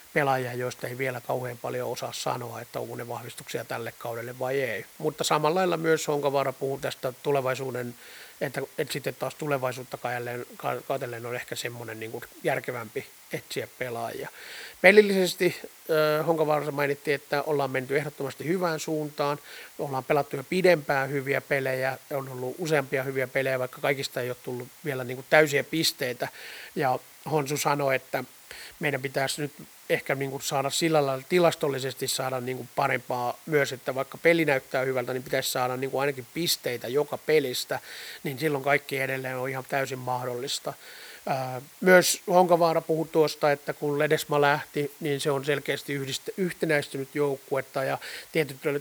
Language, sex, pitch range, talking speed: Finnish, male, 130-150 Hz, 150 wpm